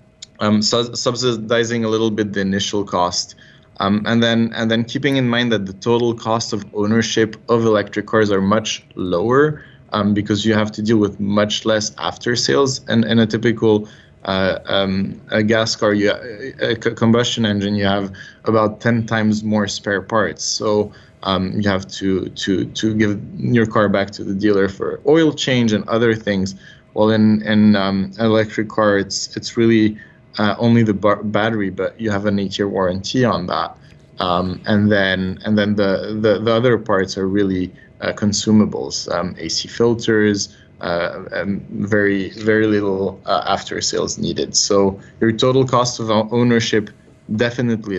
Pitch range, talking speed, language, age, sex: 100-115 Hz, 170 wpm, English, 20-39, male